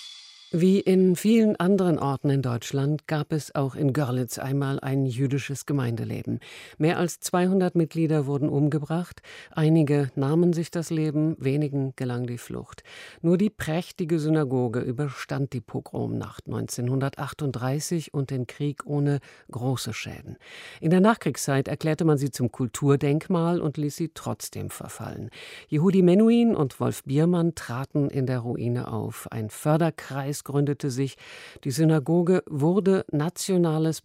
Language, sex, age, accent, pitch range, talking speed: German, female, 50-69, German, 130-160 Hz, 135 wpm